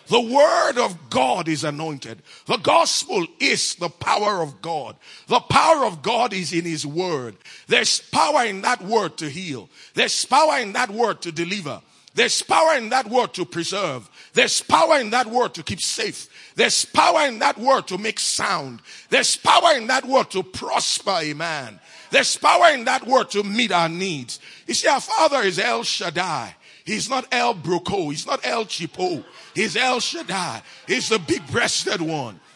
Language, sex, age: English, male, 50-69